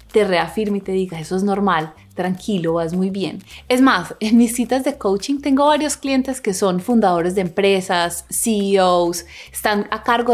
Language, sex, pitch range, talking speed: Spanish, female, 180-240 Hz, 180 wpm